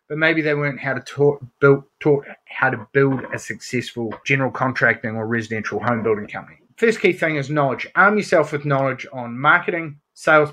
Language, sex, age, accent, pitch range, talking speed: English, male, 30-49, Australian, 125-165 Hz, 170 wpm